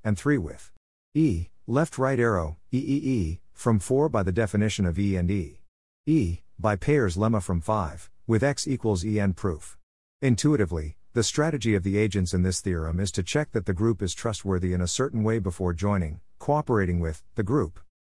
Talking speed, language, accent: 185 wpm, English, American